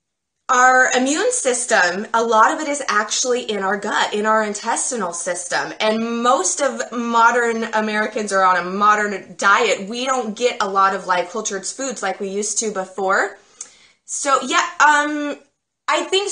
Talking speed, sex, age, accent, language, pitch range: 160 wpm, female, 20-39, American, English, 190-250 Hz